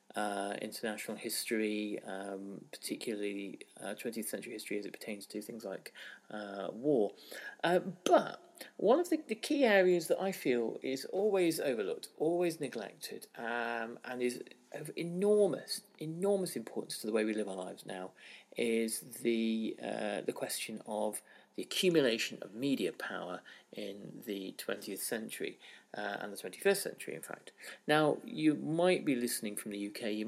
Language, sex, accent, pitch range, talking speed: English, male, British, 110-170 Hz, 155 wpm